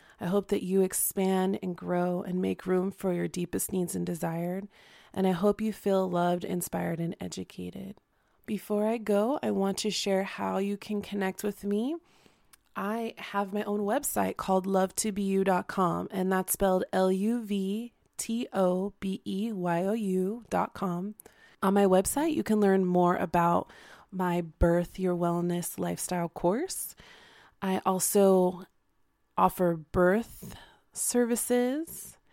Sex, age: female, 20-39